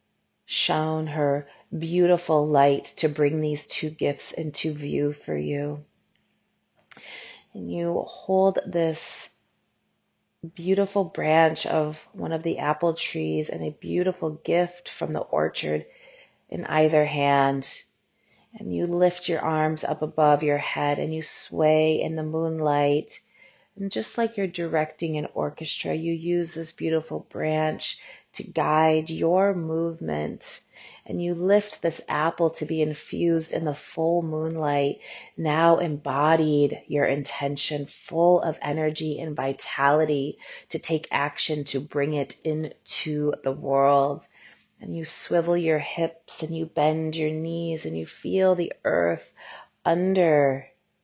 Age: 30-49